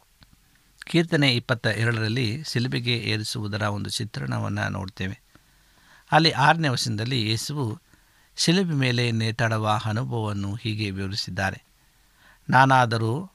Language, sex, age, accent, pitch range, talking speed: Kannada, male, 60-79, native, 110-145 Hz, 85 wpm